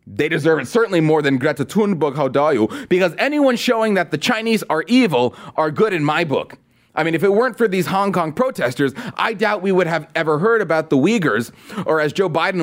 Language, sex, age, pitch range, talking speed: English, male, 30-49, 155-215 Hz, 215 wpm